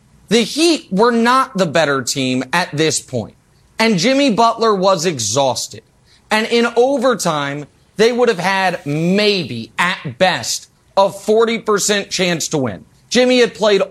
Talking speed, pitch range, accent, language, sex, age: 140 wpm, 165-235 Hz, American, English, male, 30-49